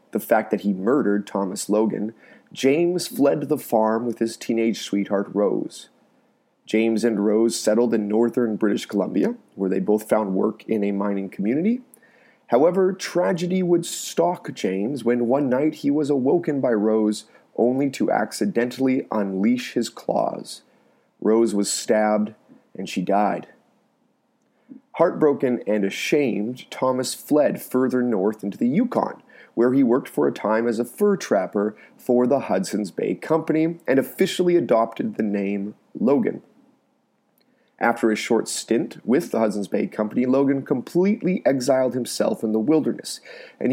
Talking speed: 145 wpm